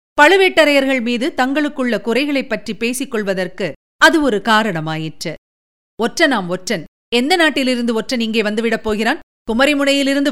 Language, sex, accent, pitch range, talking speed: Tamil, female, native, 215-290 Hz, 115 wpm